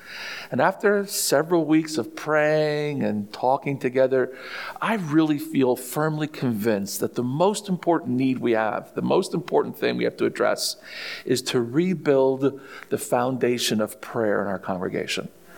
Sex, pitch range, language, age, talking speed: male, 120-155 Hz, English, 50-69, 150 wpm